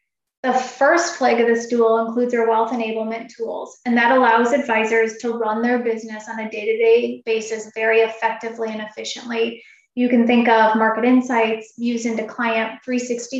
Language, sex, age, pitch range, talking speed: English, female, 20-39, 225-250 Hz, 165 wpm